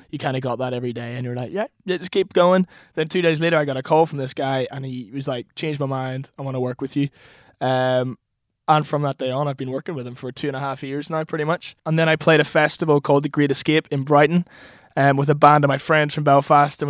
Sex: male